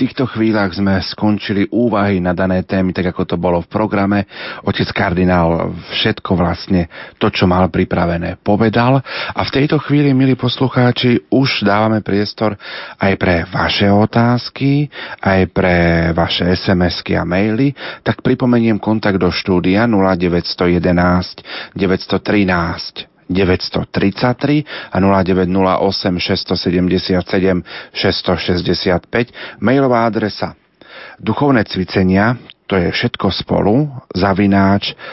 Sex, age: male, 40-59